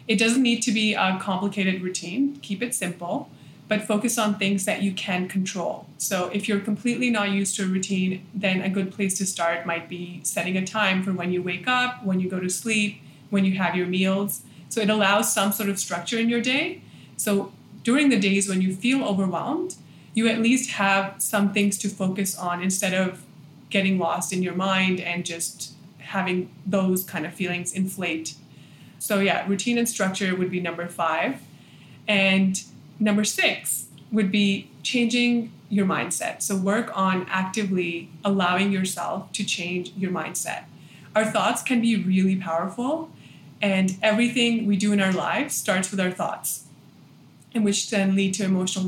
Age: 20-39